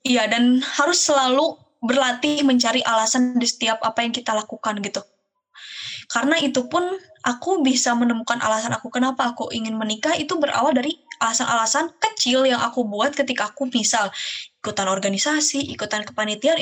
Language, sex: Indonesian, female